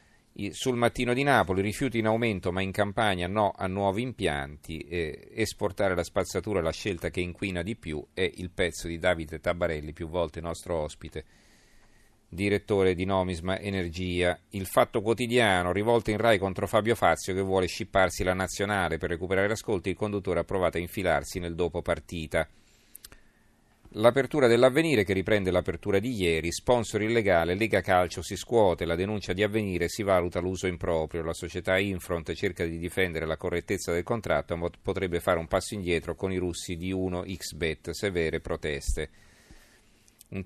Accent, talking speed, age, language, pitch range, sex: native, 160 wpm, 40-59, Italian, 85-105 Hz, male